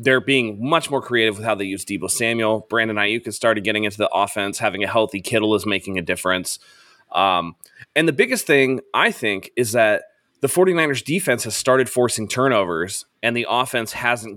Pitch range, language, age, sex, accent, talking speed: 105-130 Hz, English, 20-39, male, American, 195 wpm